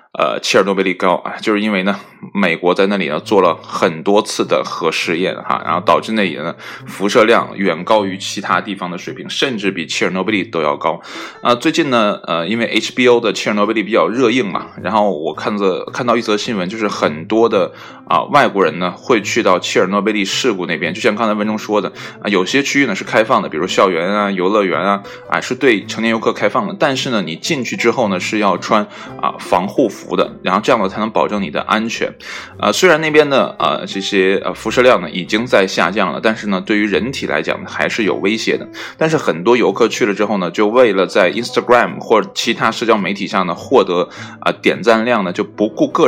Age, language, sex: 20-39, Chinese, male